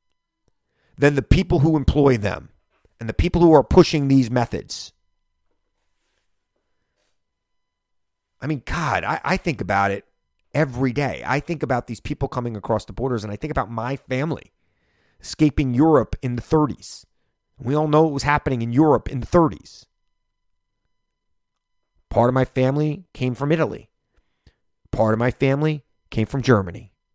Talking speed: 150 wpm